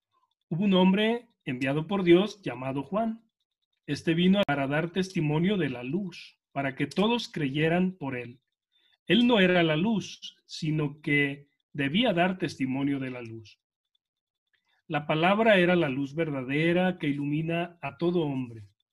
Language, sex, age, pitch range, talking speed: Spanish, male, 40-59, 140-190 Hz, 145 wpm